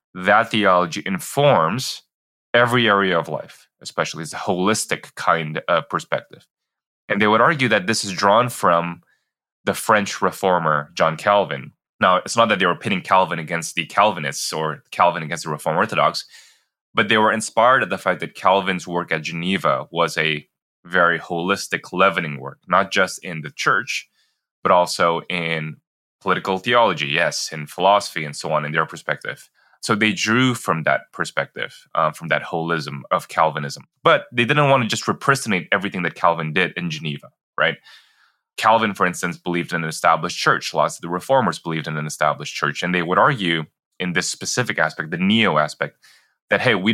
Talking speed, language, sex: 180 wpm, English, male